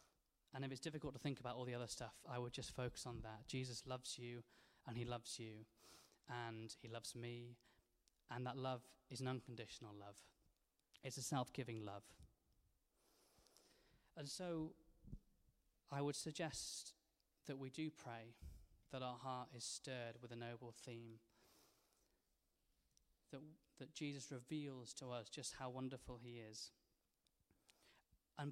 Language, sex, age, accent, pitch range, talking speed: English, male, 20-39, British, 115-135 Hz, 145 wpm